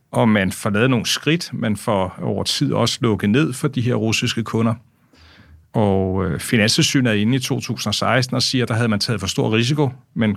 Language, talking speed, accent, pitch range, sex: Danish, 205 wpm, native, 105-125 Hz, male